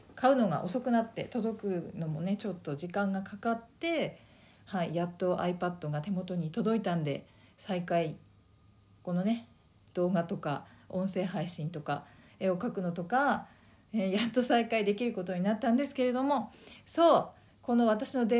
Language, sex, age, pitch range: Japanese, female, 40-59, 175-250 Hz